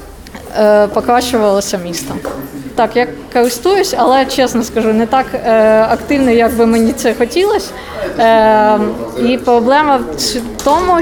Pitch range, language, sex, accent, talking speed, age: 210-250 Hz, Ukrainian, female, native, 110 wpm, 20-39